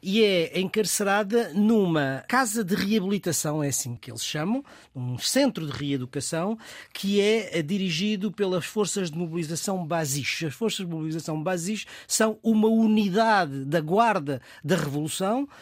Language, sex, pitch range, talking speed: Portuguese, male, 170-225 Hz, 140 wpm